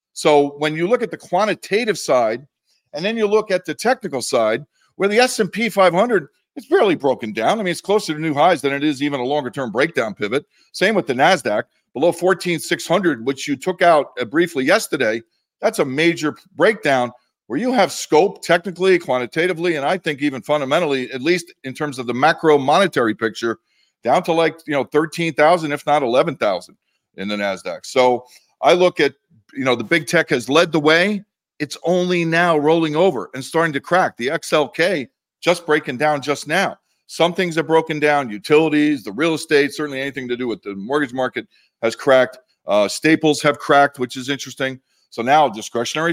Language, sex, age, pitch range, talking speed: English, male, 50-69, 140-175 Hz, 190 wpm